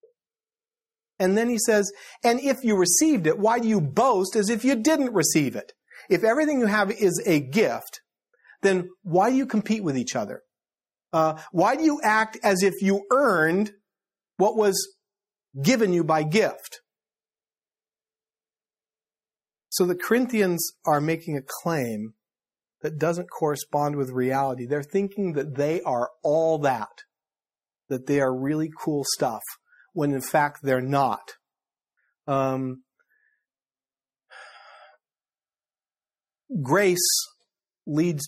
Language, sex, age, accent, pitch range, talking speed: English, male, 50-69, American, 135-215 Hz, 130 wpm